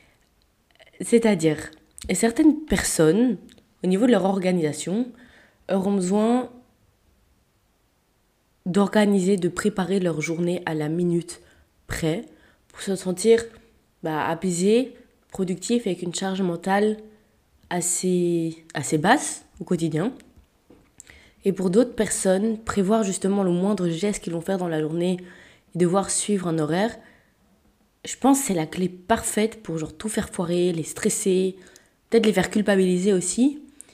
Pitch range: 175-230 Hz